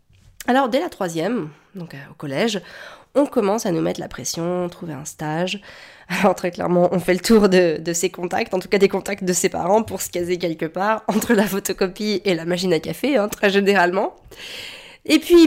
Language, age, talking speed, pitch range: French, 20-39, 215 wpm, 165-220 Hz